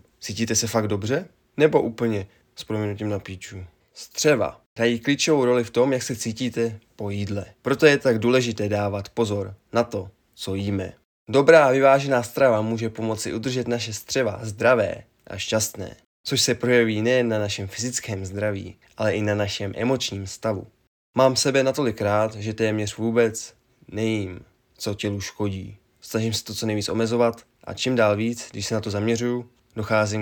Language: Czech